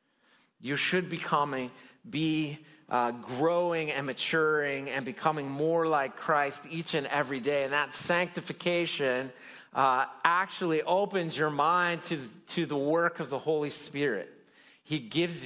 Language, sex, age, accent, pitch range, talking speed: English, male, 40-59, American, 135-170 Hz, 140 wpm